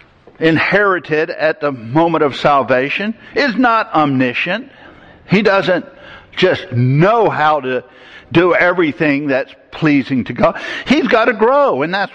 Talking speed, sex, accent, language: 135 wpm, male, American, English